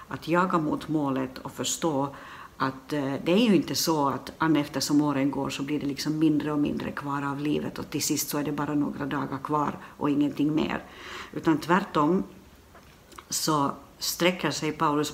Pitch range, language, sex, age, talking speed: 140-165 Hz, Swedish, female, 60-79, 175 wpm